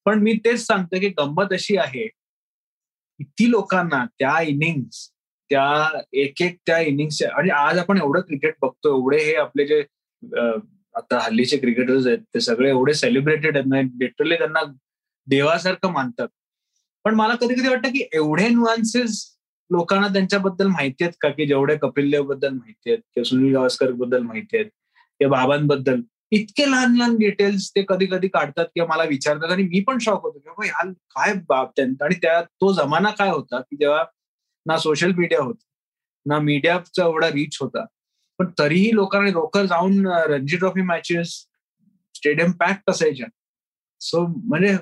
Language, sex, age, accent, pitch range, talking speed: Marathi, male, 20-39, native, 145-200 Hz, 150 wpm